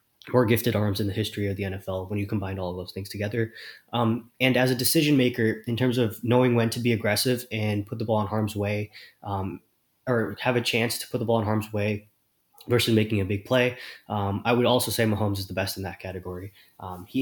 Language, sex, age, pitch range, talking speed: English, male, 20-39, 100-120 Hz, 240 wpm